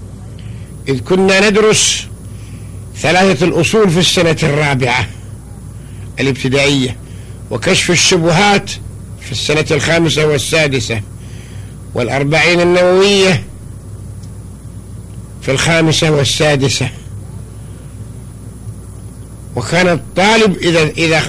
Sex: male